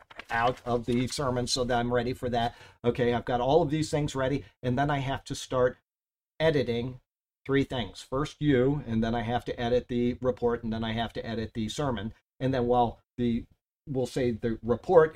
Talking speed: 210 wpm